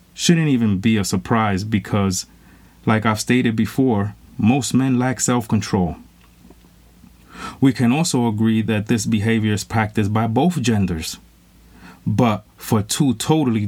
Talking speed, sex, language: 130 wpm, male, English